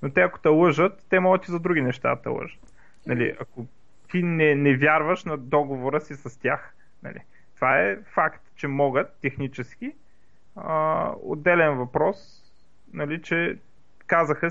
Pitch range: 135-185 Hz